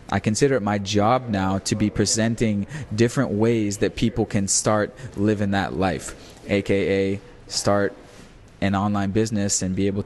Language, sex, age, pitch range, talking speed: English, male, 20-39, 100-115 Hz, 155 wpm